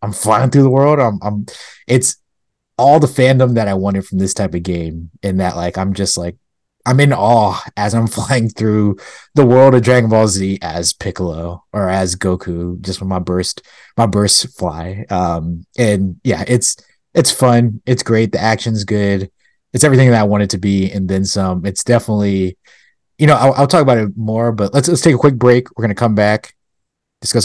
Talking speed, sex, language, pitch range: 210 wpm, male, English, 90-120 Hz